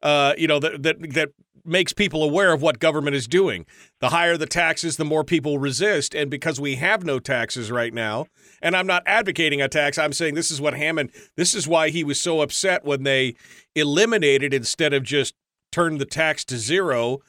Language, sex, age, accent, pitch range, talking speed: English, male, 40-59, American, 140-180 Hz, 210 wpm